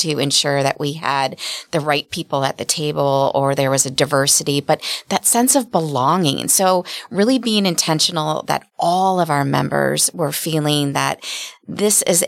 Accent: American